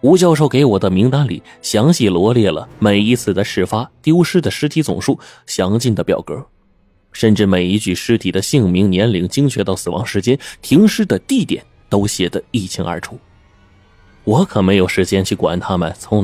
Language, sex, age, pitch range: Chinese, male, 20-39, 95-135 Hz